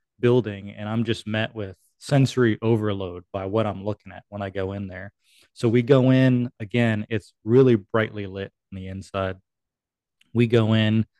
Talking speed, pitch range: 175 wpm, 100-120 Hz